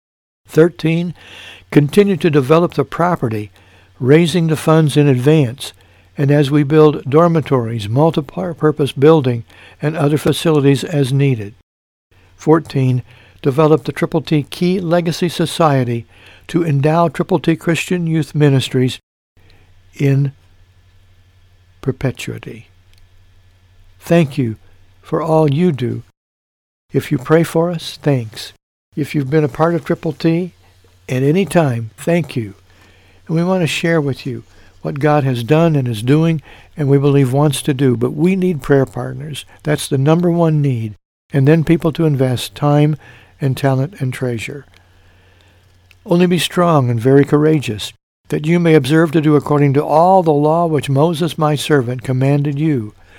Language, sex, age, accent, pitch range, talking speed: English, male, 60-79, American, 110-160 Hz, 145 wpm